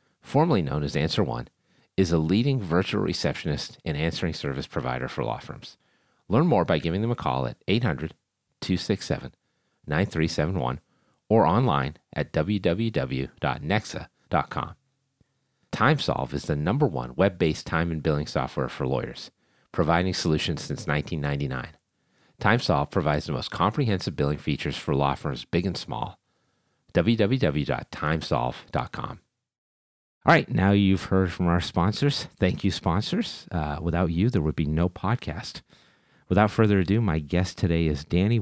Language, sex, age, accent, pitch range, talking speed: English, male, 40-59, American, 80-110 Hz, 135 wpm